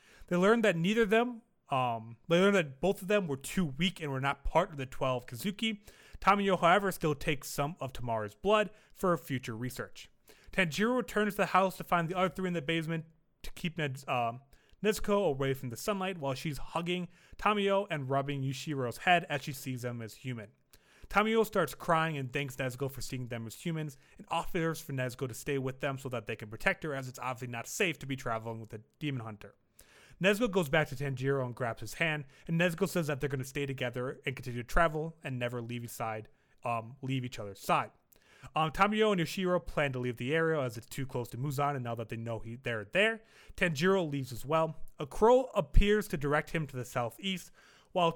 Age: 30-49